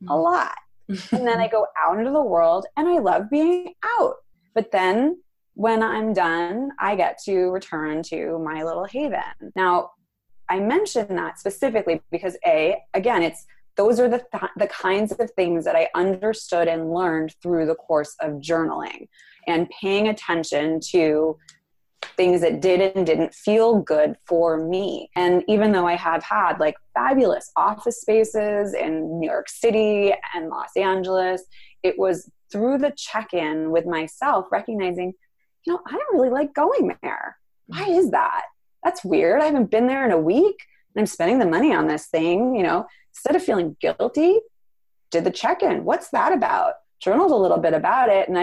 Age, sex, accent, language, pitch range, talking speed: 20-39, female, American, English, 170-245 Hz, 170 wpm